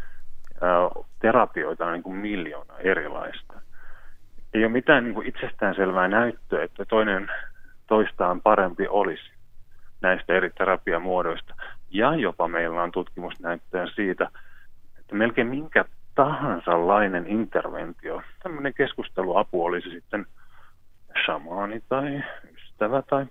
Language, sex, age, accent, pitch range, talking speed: Finnish, male, 30-49, native, 100-130 Hz, 105 wpm